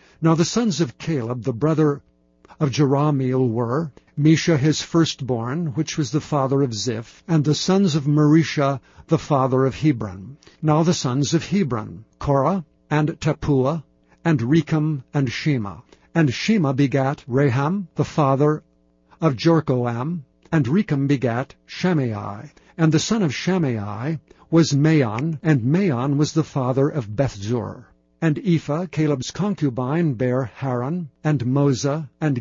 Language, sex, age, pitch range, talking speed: English, male, 60-79, 130-160 Hz, 140 wpm